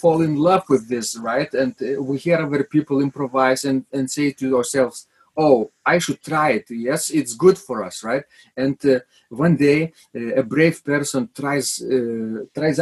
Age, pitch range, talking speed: 40-59, 125-160 Hz, 185 wpm